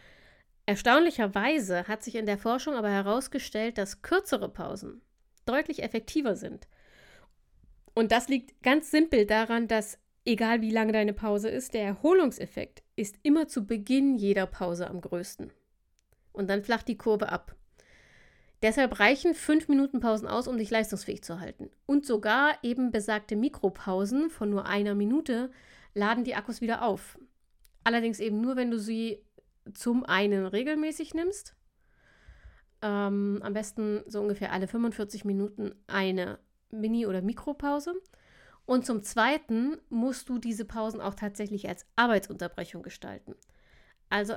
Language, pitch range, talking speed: German, 205-250 Hz, 140 wpm